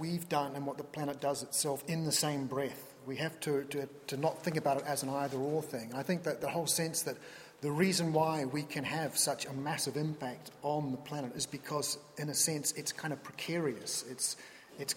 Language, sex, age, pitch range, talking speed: English, male, 40-59, 135-160 Hz, 225 wpm